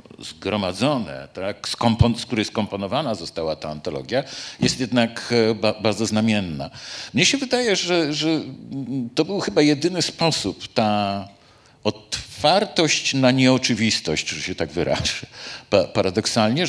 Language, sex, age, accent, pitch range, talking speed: Polish, male, 50-69, native, 95-135 Hz, 110 wpm